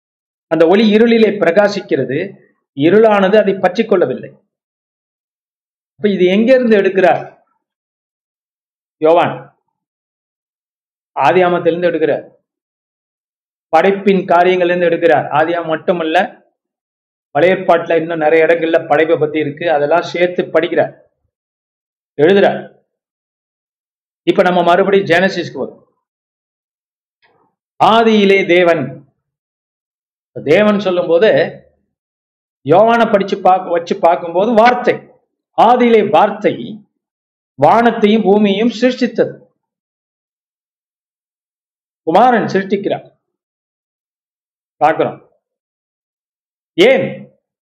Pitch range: 170-215 Hz